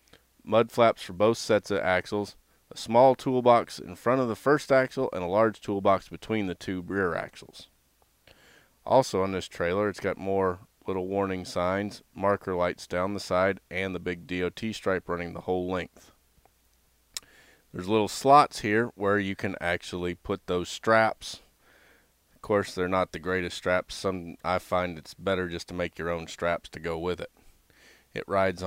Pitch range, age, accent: 85-100 Hz, 30-49, American